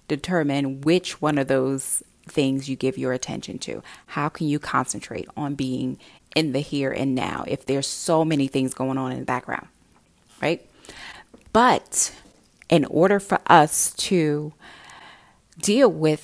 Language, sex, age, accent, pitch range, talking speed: English, female, 30-49, American, 140-175 Hz, 150 wpm